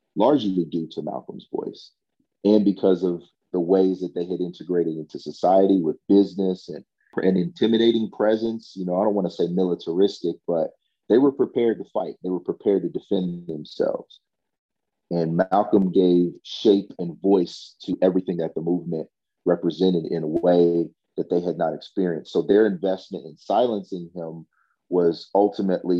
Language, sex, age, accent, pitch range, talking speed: English, male, 40-59, American, 85-100 Hz, 160 wpm